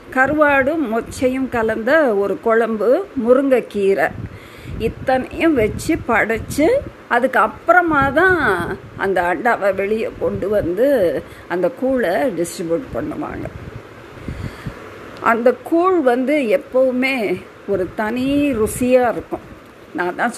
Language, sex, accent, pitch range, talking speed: Tamil, female, native, 210-285 Hz, 95 wpm